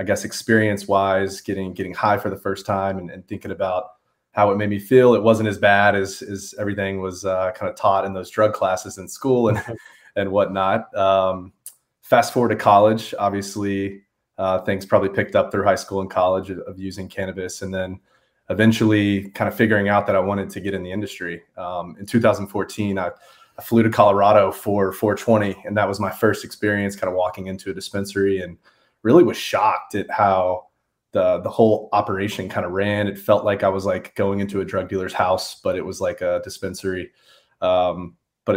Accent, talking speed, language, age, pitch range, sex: American, 205 wpm, English, 30-49, 95-105 Hz, male